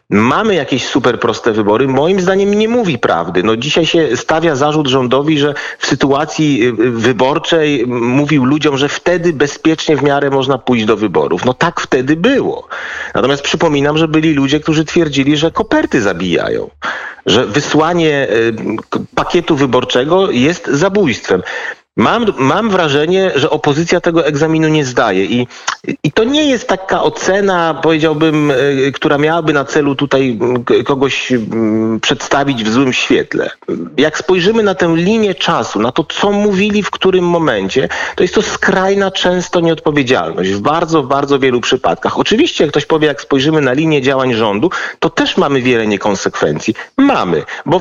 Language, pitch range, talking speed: Polish, 135-175 Hz, 150 wpm